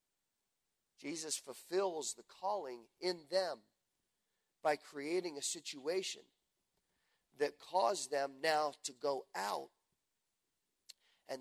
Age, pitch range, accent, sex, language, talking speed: 40-59, 125-165 Hz, American, male, English, 95 wpm